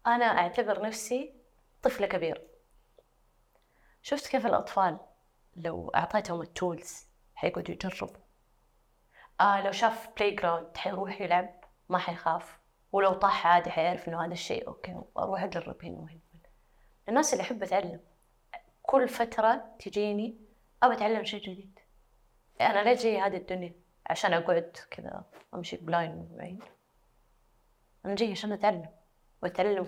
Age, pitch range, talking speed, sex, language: 20-39, 170-215 Hz, 120 wpm, female, Arabic